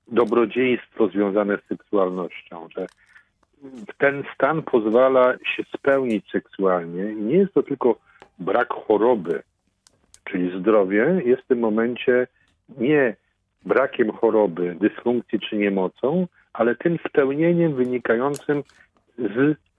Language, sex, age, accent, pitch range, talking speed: Polish, male, 40-59, native, 100-130 Hz, 105 wpm